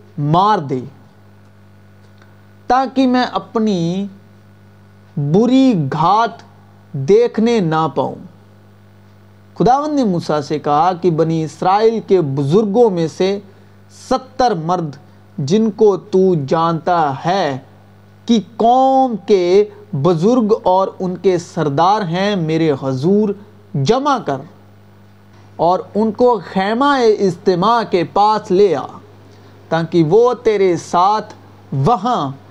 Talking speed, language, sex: 105 wpm, Urdu, male